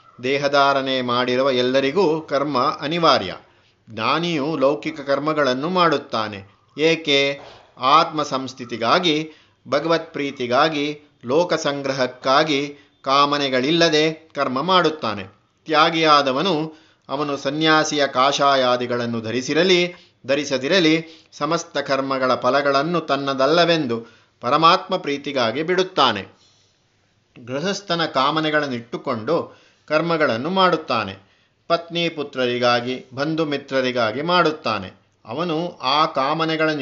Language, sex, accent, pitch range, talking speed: Kannada, male, native, 130-160 Hz, 70 wpm